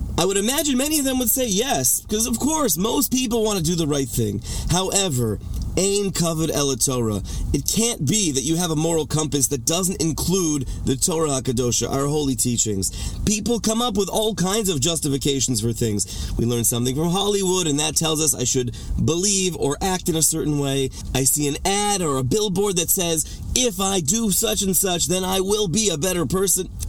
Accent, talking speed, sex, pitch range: American, 210 wpm, male, 125-190 Hz